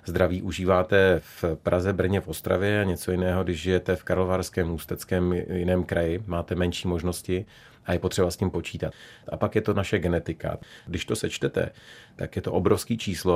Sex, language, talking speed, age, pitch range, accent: male, Czech, 180 wpm, 30-49, 85-95 Hz, native